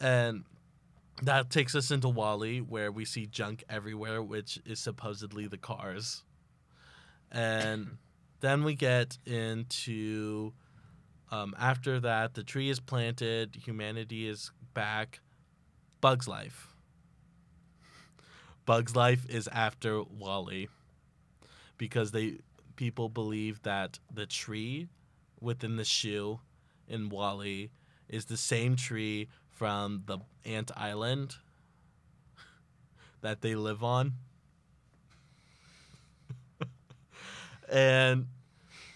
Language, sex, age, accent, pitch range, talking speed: English, male, 20-39, American, 110-135 Hz, 95 wpm